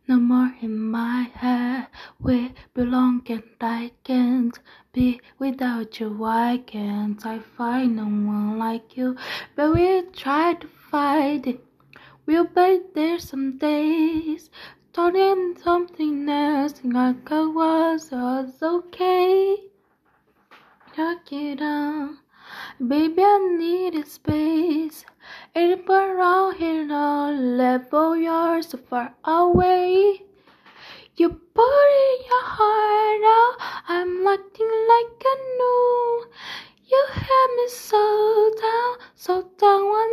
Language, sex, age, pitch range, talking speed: Portuguese, female, 20-39, 290-410 Hz, 110 wpm